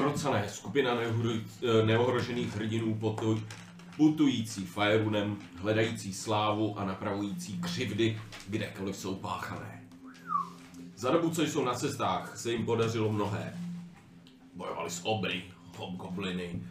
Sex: male